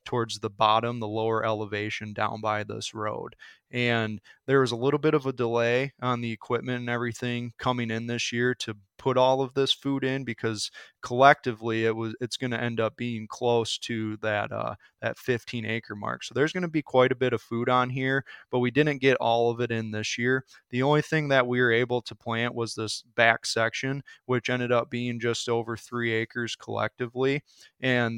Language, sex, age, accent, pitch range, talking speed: English, male, 20-39, American, 115-130 Hz, 210 wpm